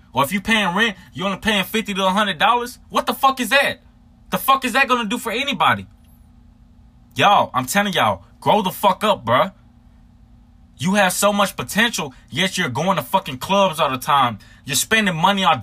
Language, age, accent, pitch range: English, 20-39, American, 185-230 Hz